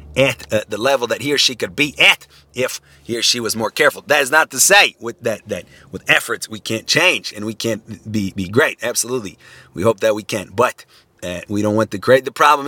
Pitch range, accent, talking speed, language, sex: 110-140 Hz, American, 245 wpm, English, male